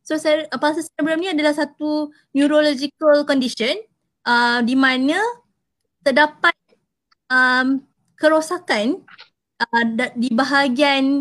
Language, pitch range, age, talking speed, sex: Malay, 270-325 Hz, 20-39, 90 wpm, female